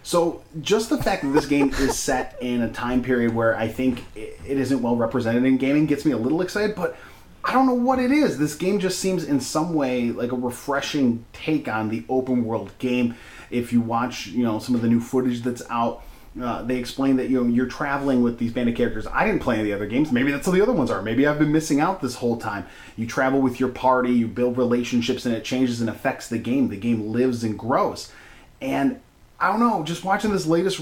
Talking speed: 240 wpm